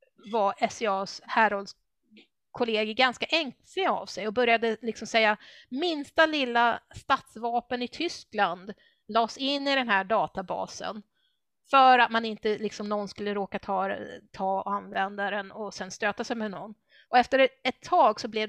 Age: 30-49